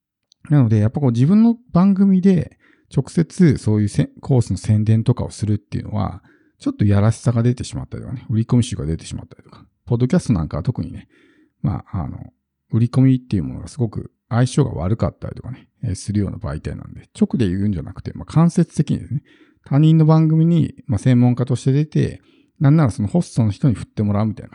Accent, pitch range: native, 105-135 Hz